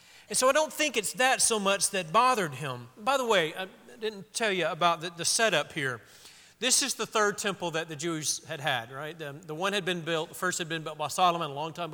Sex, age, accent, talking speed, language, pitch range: male, 40-59, American, 255 wpm, English, 150-195 Hz